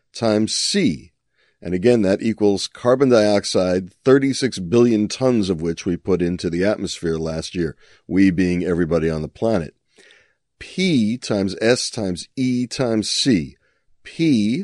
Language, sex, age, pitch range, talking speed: English, male, 40-59, 90-115 Hz, 140 wpm